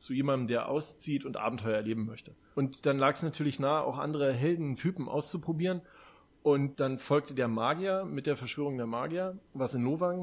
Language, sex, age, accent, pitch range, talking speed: German, male, 30-49, German, 130-165 Hz, 180 wpm